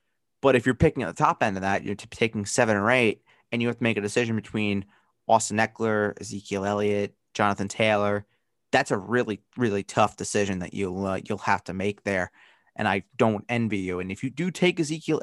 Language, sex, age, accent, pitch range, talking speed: English, male, 30-49, American, 100-125 Hz, 215 wpm